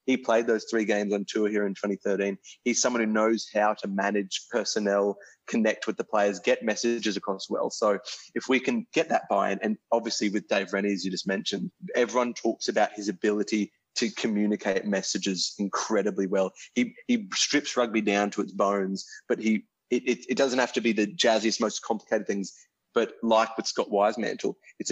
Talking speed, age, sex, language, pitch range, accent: 190 wpm, 20-39, male, English, 100-120 Hz, Australian